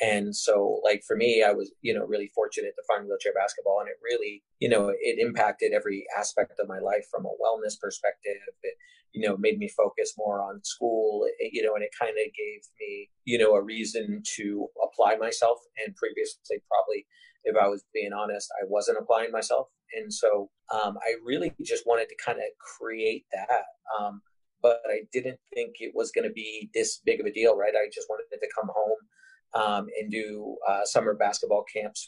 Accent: American